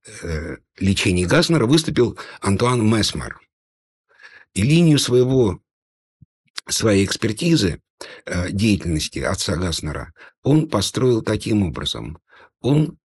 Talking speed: 80 wpm